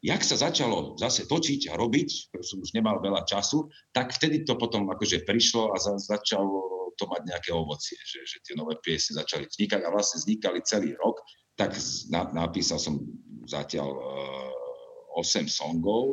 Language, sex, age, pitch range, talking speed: Slovak, male, 50-69, 100-150 Hz, 170 wpm